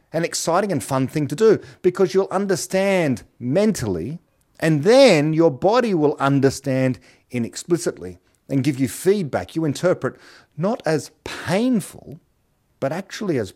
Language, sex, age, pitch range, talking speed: English, male, 40-59, 120-180 Hz, 135 wpm